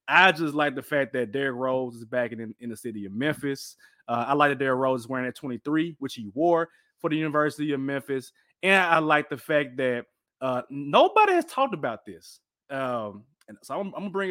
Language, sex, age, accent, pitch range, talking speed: English, male, 30-49, American, 135-200 Hz, 220 wpm